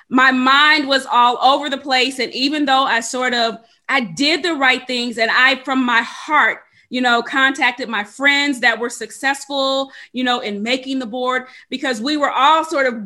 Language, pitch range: English, 230-280 Hz